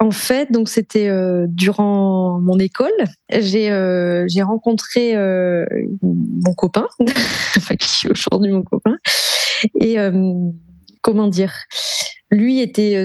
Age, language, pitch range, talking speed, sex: 20-39, French, 185-215 Hz, 125 wpm, female